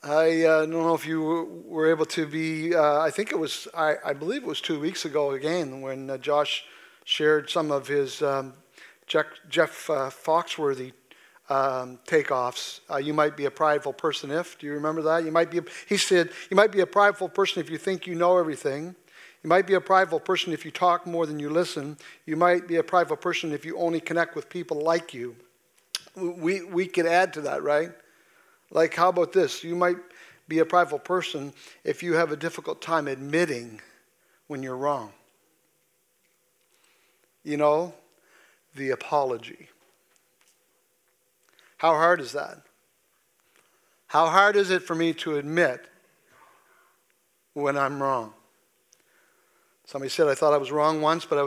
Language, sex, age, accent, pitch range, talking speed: English, male, 50-69, American, 150-180 Hz, 175 wpm